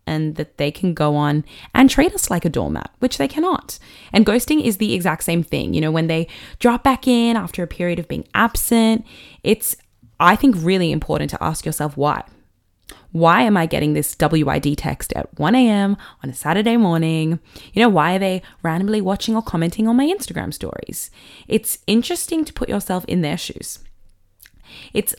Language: English